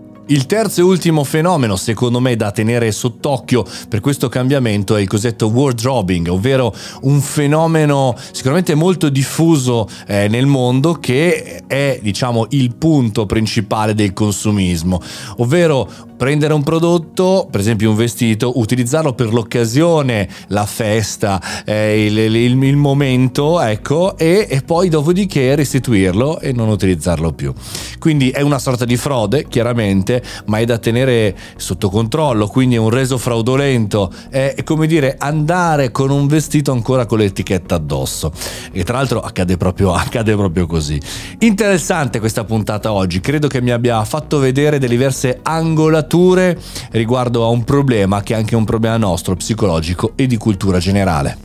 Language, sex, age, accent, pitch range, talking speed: Italian, male, 30-49, native, 105-140 Hz, 145 wpm